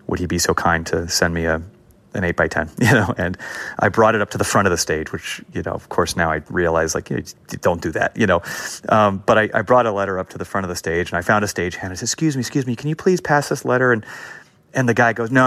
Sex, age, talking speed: male, 30-49, 305 wpm